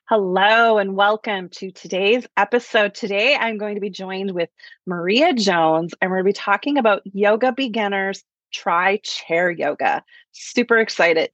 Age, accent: 30-49, American